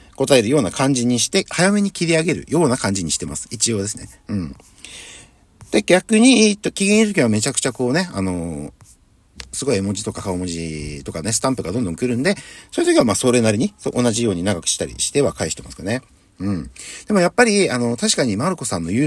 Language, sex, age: Japanese, male, 50-69